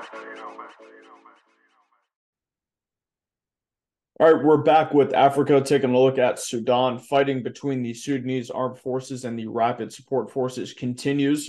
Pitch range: 120-135 Hz